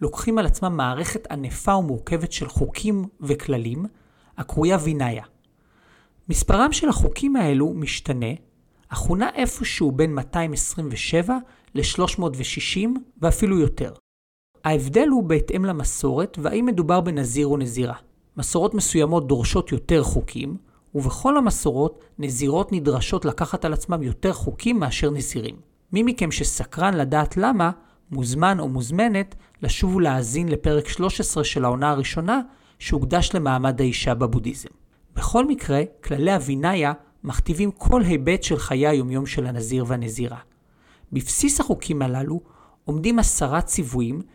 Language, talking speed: Hebrew, 120 wpm